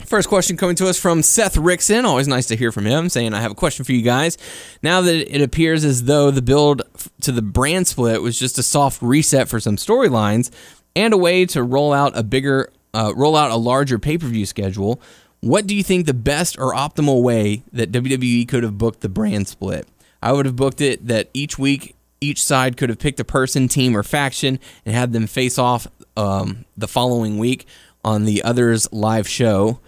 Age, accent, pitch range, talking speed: 10-29, American, 110-135 Hz, 215 wpm